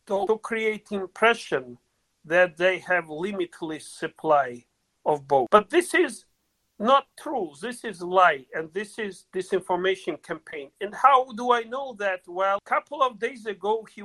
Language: English